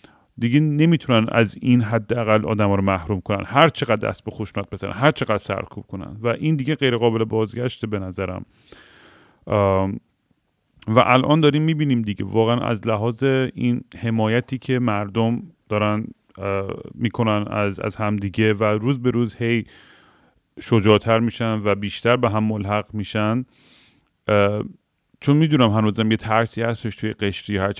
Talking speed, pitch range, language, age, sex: 155 wpm, 105-125 Hz, Persian, 40-59, male